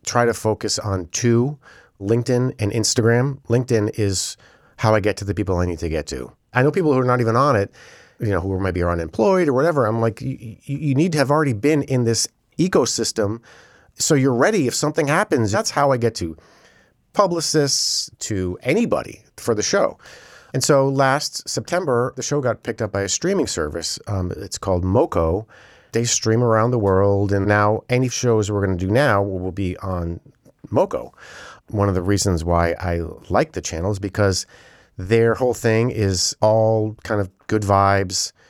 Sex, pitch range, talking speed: male, 100-125 Hz, 190 wpm